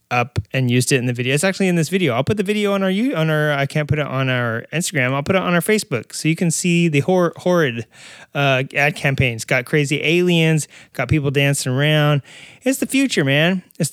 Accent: American